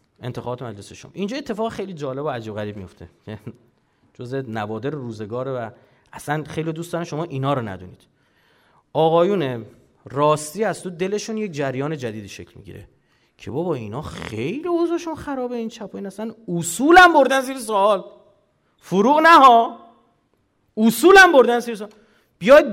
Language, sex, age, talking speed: Persian, male, 30-49, 145 wpm